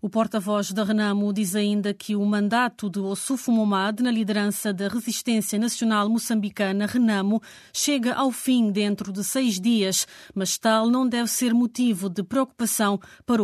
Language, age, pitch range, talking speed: Portuguese, 20-39, 205-235 Hz, 155 wpm